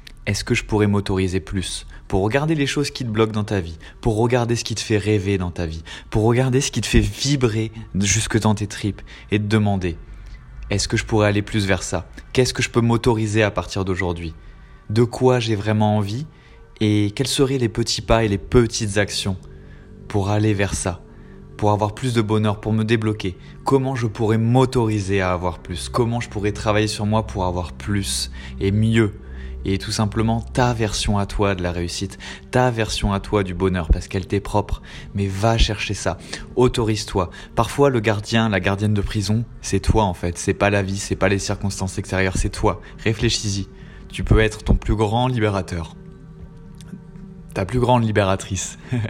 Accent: French